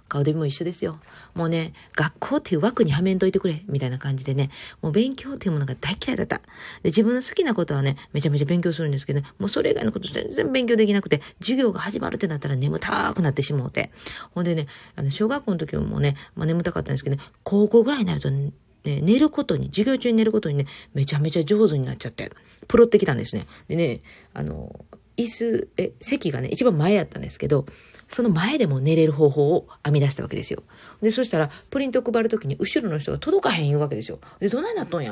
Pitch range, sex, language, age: 145-225 Hz, female, Japanese, 40-59